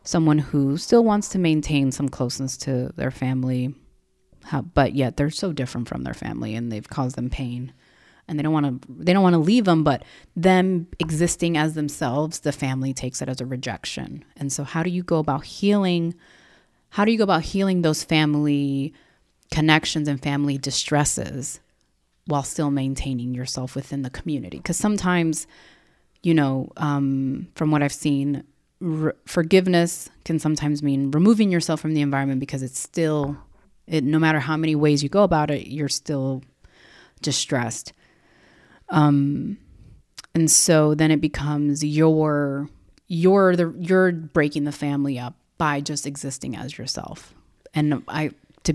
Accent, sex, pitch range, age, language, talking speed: American, female, 135-160 Hz, 30-49, English, 160 wpm